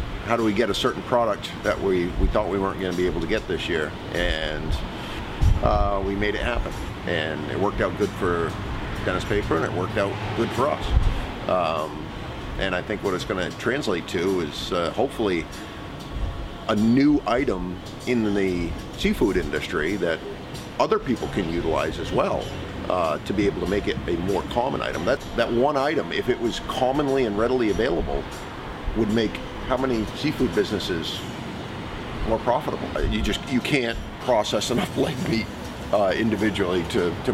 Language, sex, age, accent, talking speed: English, male, 40-59, American, 180 wpm